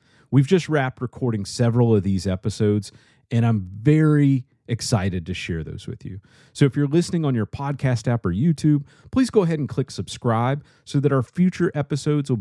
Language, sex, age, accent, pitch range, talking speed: English, male, 40-59, American, 100-135 Hz, 190 wpm